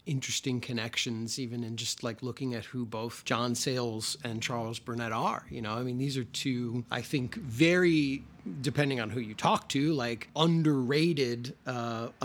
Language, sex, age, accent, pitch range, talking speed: English, male, 30-49, American, 120-145 Hz, 170 wpm